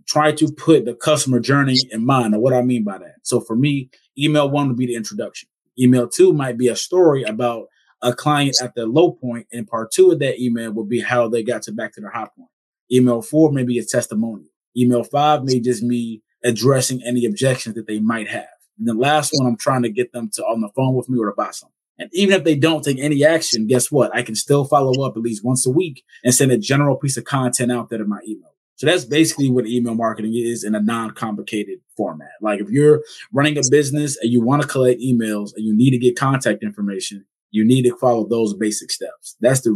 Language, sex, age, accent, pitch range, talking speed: English, male, 20-39, American, 115-145 Hz, 245 wpm